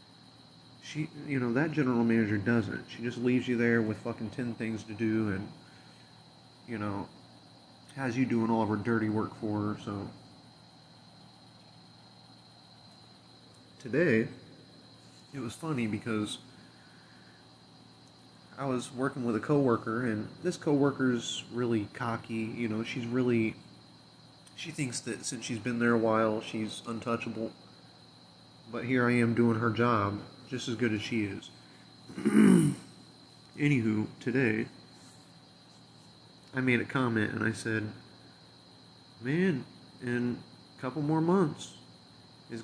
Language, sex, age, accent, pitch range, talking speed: English, male, 30-49, American, 110-130 Hz, 130 wpm